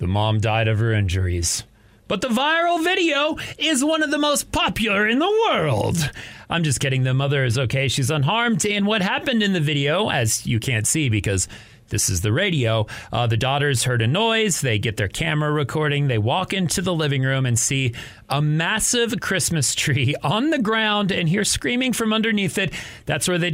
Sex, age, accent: male, 30-49, American